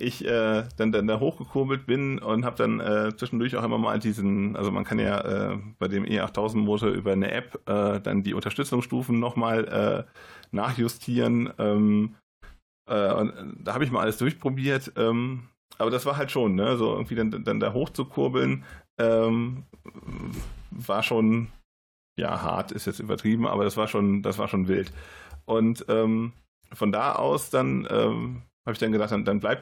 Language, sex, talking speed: German, male, 180 wpm